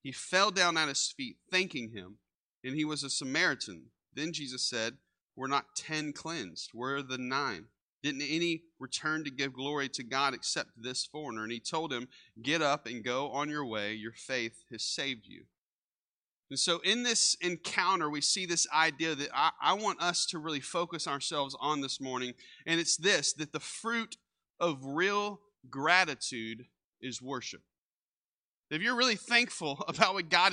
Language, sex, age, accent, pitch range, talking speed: English, male, 30-49, American, 145-225 Hz, 175 wpm